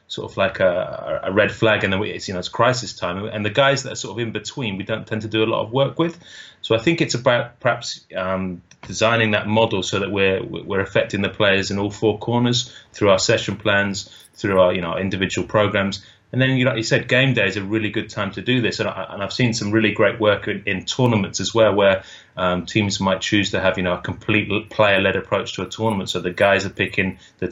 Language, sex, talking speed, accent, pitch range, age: English, male, 260 wpm, British, 95-115 Hz, 30-49